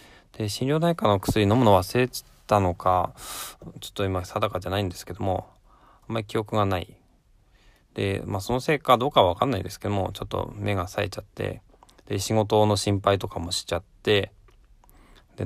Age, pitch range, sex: 20-39, 90-110 Hz, male